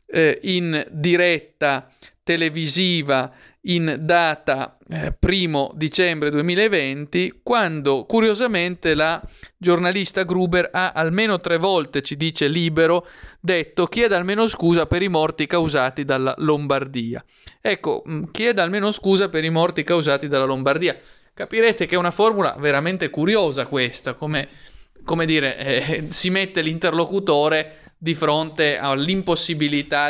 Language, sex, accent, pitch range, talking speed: Italian, male, native, 140-175 Hz, 120 wpm